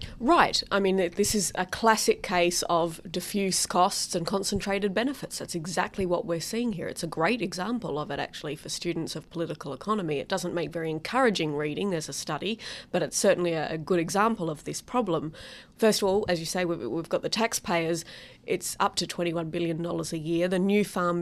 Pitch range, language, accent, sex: 165-195 Hz, English, Australian, female